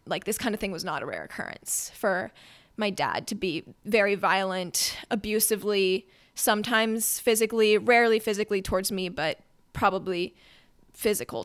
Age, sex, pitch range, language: 20-39, female, 205-240 Hz, English